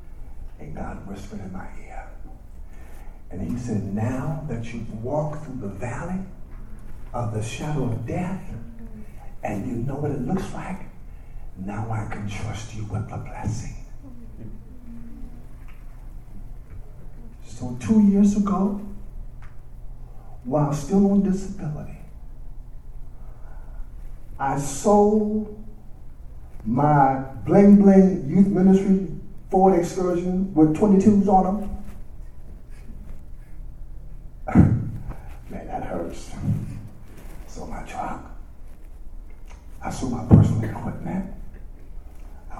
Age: 50-69